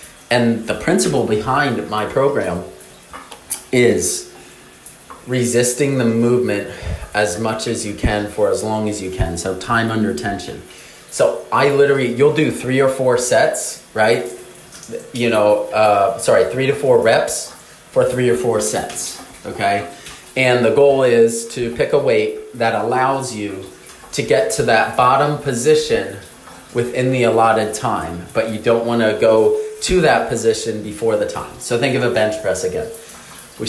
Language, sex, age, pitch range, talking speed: English, male, 30-49, 105-140 Hz, 160 wpm